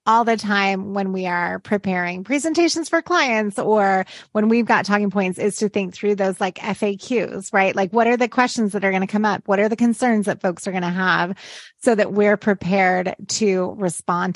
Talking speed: 205 wpm